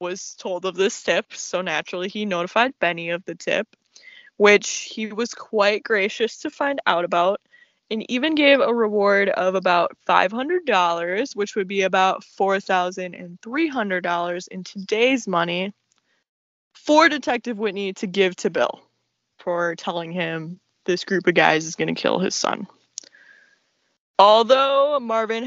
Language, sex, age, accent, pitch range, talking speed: English, female, 20-39, American, 180-225 Hz, 140 wpm